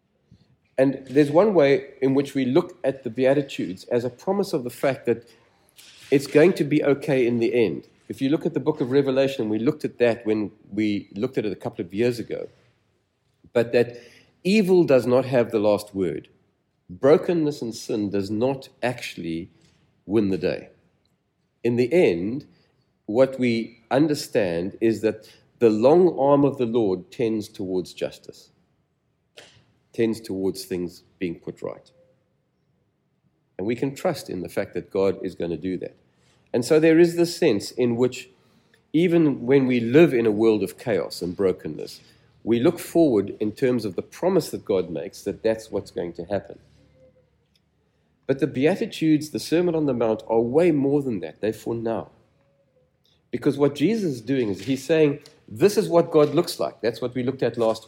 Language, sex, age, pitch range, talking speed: English, male, 50-69, 110-150 Hz, 180 wpm